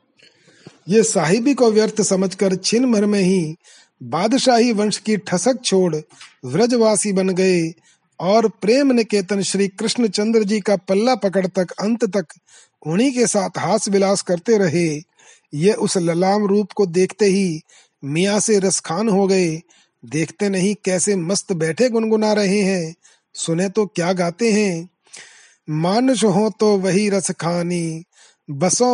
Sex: male